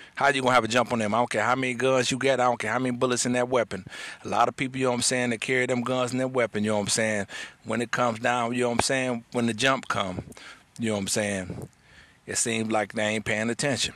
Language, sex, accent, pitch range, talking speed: English, male, American, 105-125 Hz, 315 wpm